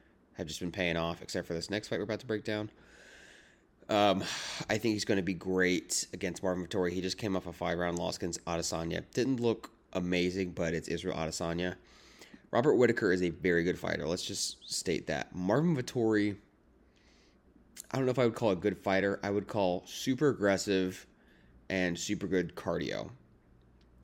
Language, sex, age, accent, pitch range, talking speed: English, male, 30-49, American, 85-110 Hz, 185 wpm